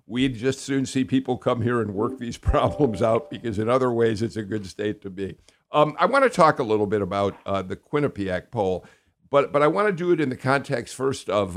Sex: male